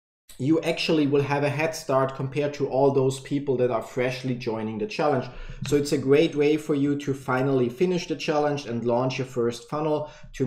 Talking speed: 205 wpm